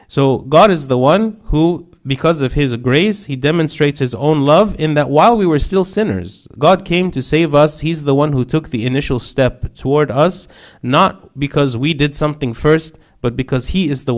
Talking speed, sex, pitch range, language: 205 wpm, male, 115-145 Hz, English